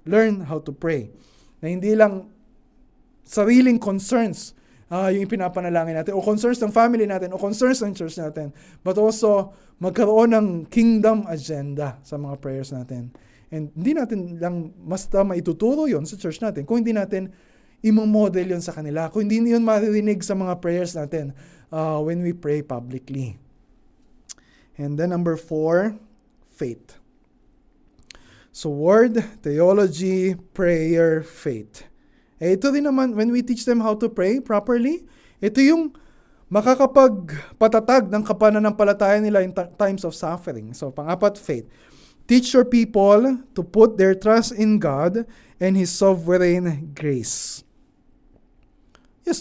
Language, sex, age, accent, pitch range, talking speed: Filipino, male, 20-39, native, 165-220 Hz, 135 wpm